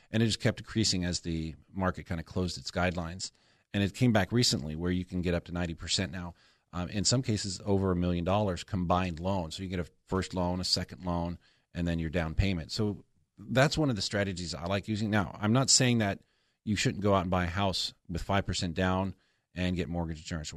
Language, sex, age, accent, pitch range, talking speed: English, male, 40-59, American, 85-100 Hz, 230 wpm